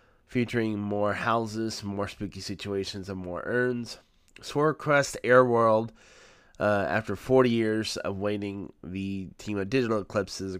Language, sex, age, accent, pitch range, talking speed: English, male, 20-39, American, 90-110 Hz, 130 wpm